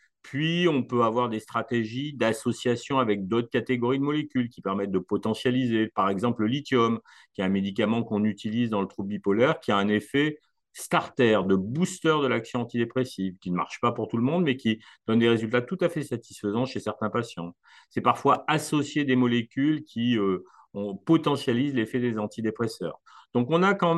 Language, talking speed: French, 190 wpm